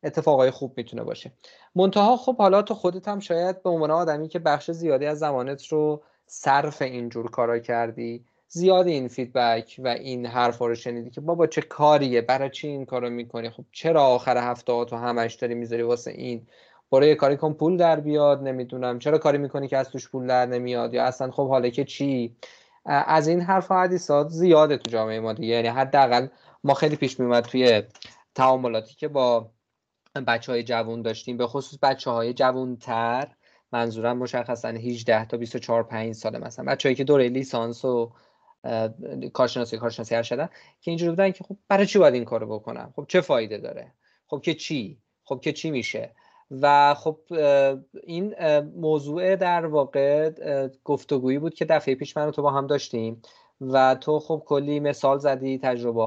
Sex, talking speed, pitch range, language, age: male, 165 wpm, 120-150 Hz, Persian, 20-39